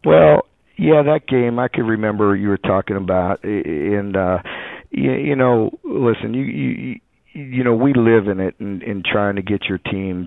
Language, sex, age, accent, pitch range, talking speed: English, male, 50-69, American, 95-110 Hz, 195 wpm